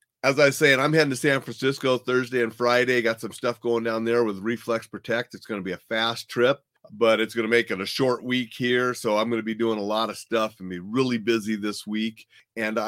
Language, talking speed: English, 250 wpm